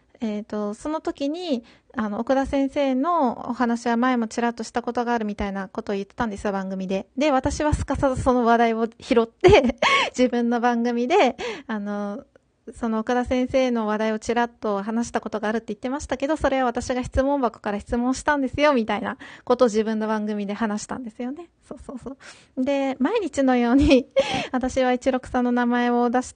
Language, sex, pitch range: Japanese, female, 225-270 Hz